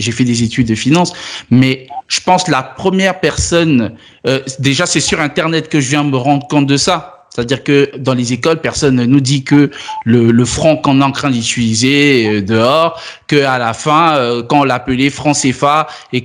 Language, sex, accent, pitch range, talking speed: French, male, French, 130-165 Hz, 200 wpm